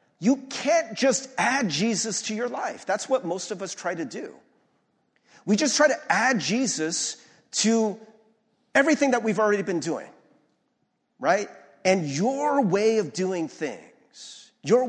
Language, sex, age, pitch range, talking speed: English, male, 40-59, 195-260 Hz, 150 wpm